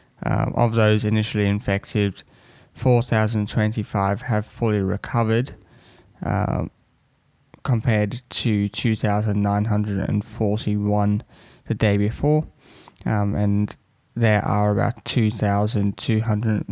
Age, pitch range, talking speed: 20-39, 105-120 Hz, 120 wpm